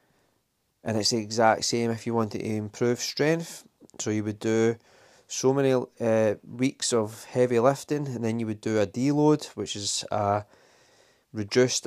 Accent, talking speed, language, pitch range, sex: British, 165 wpm, English, 105-125 Hz, male